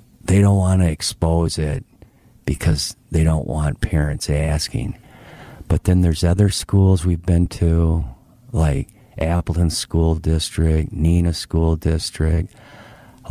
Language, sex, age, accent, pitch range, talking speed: English, male, 50-69, American, 80-105 Hz, 125 wpm